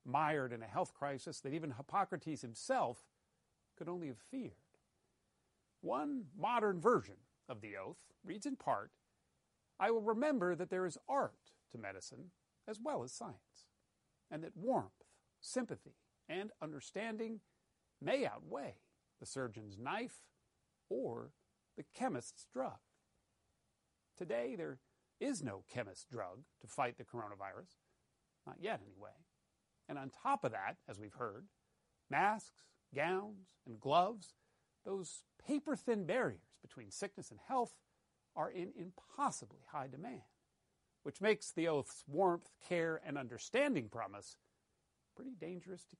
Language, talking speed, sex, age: English, 130 wpm, male, 50-69